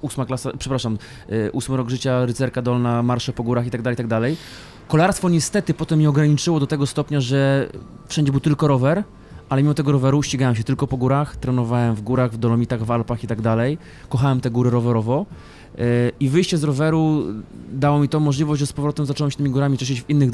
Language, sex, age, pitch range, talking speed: Polish, male, 20-39, 120-140 Hz, 195 wpm